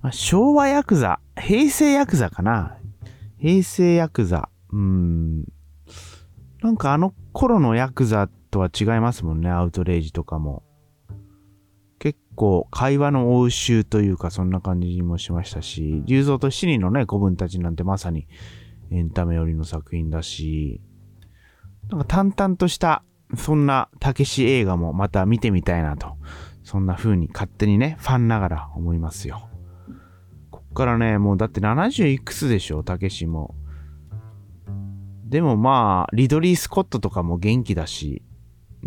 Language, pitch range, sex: Japanese, 85-130 Hz, male